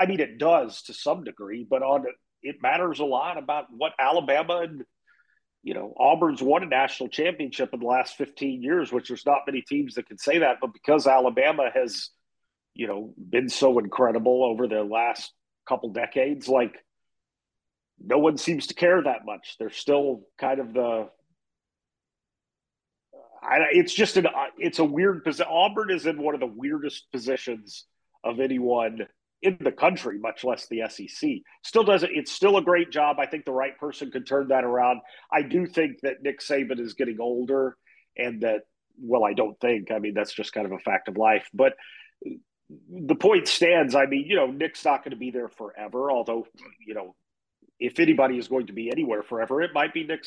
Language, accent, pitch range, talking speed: English, American, 125-170 Hz, 190 wpm